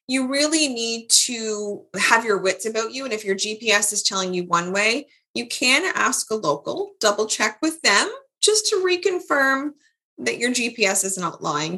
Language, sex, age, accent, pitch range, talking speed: English, female, 20-39, American, 180-245 Hz, 185 wpm